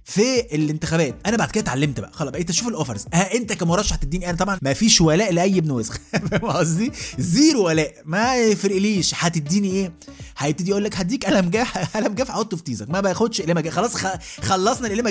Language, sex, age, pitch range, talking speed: Arabic, male, 20-39, 150-210 Hz, 185 wpm